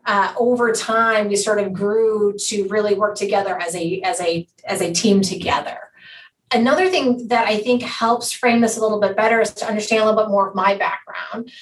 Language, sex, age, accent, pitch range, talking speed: English, female, 30-49, American, 205-240 Hz, 210 wpm